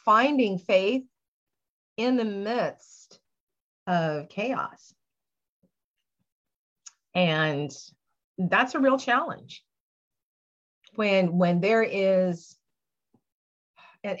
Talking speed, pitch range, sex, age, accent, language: 70 wpm, 165-215 Hz, female, 40-59, American, English